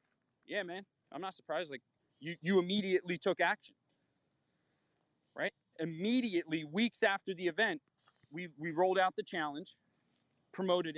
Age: 30-49